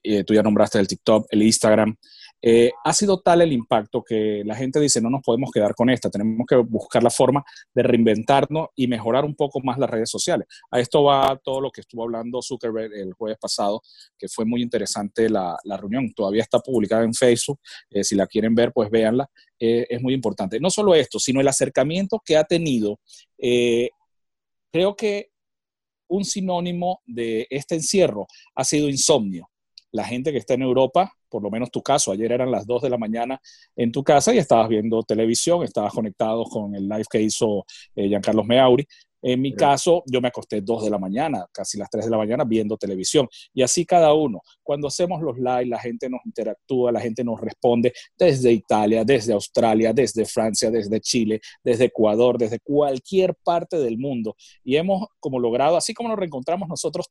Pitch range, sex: 110-150 Hz, male